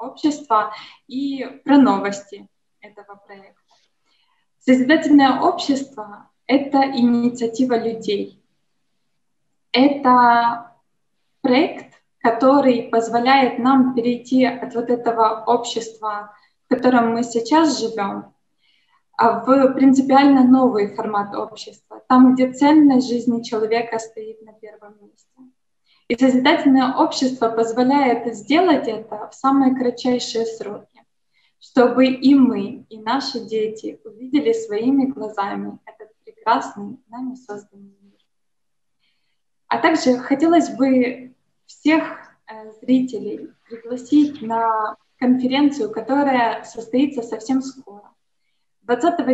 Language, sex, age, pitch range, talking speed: Russian, female, 20-39, 225-270 Hz, 95 wpm